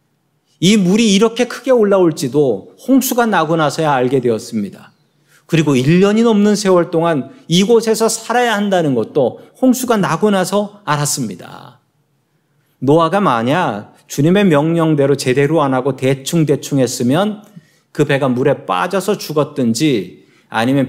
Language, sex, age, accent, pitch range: Korean, male, 40-59, native, 140-200 Hz